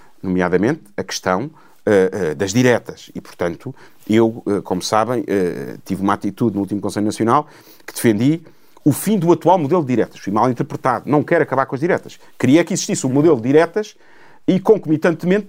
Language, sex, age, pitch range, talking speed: Portuguese, male, 40-59, 150-235 Hz, 170 wpm